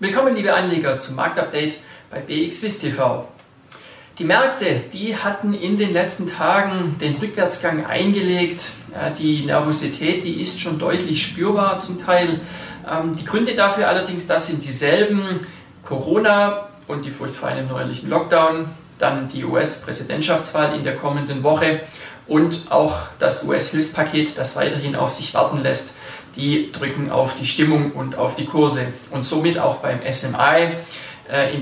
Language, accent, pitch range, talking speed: German, German, 145-185 Hz, 140 wpm